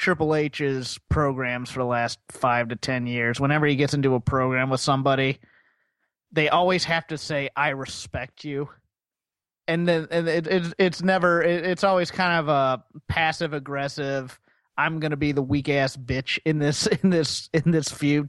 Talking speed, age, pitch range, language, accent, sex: 175 wpm, 30-49, 140-175 Hz, English, American, male